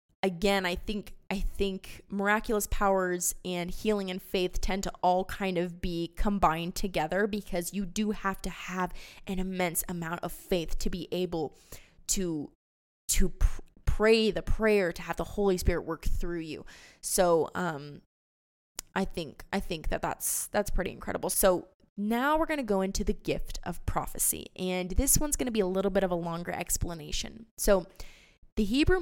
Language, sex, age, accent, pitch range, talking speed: English, female, 20-39, American, 175-210 Hz, 175 wpm